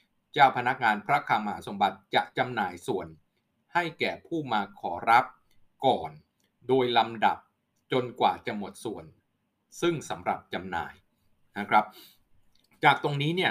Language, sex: Thai, male